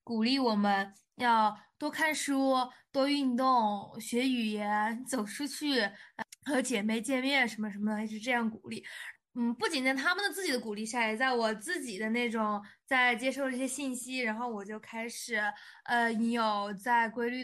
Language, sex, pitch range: Chinese, female, 220-275 Hz